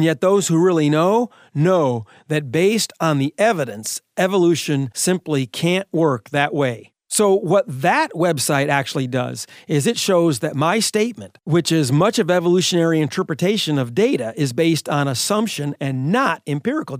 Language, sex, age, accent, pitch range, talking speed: English, male, 40-59, American, 140-185 Hz, 160 wpm